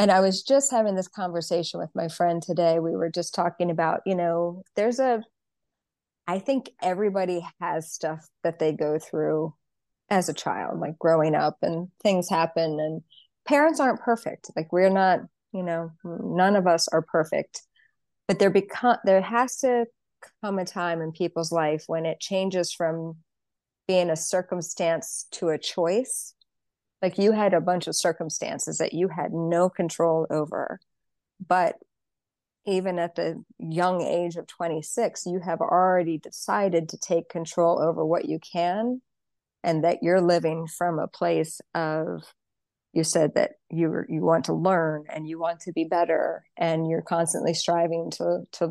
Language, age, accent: English, 30-49, American